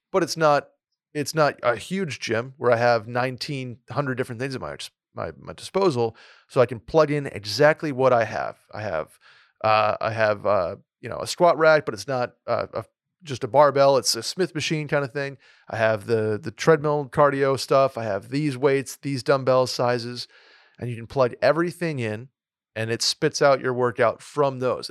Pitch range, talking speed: 120-150 Hz, 200 wpm